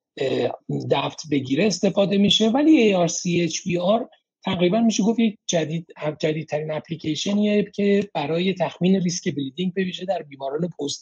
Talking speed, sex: 130 wpm, male